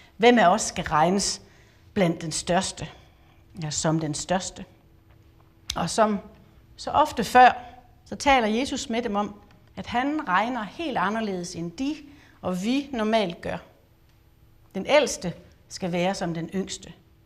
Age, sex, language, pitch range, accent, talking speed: 60-79, female, Danish, 175-235 Hz, native, 145 wpm